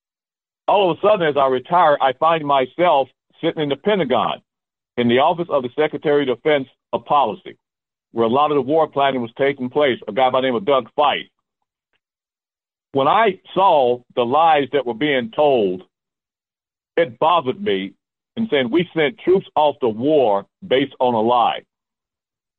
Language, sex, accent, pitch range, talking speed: English, male, American, 125-160 Hz, 175 wpm